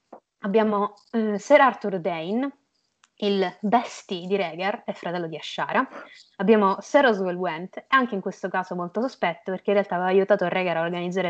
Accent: native